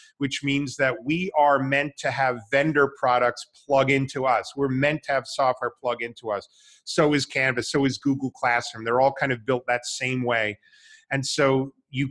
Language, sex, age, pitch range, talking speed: English, male, 30-49, 125-150 Hz, 195 wpm